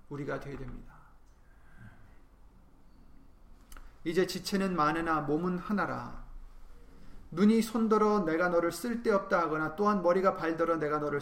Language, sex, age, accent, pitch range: Korean, male, 30-49, native, 140-190 Hz